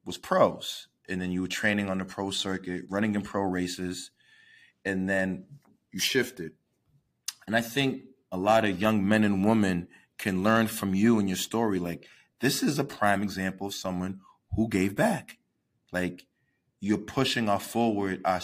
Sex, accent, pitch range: male, American, 95-110 Hz